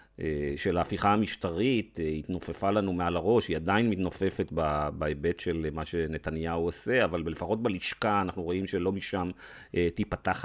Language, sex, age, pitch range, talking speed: Hebrew, male, 40-59, 85-115 Hz, 130 wpm